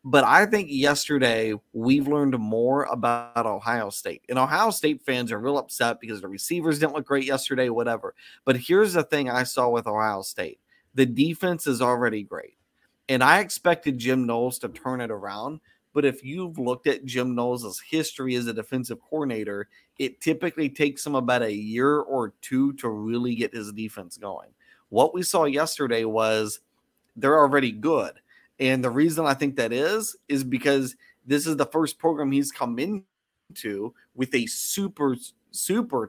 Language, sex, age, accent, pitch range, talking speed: English, male, 30-49, American, 125-155 Hz, 175 wpm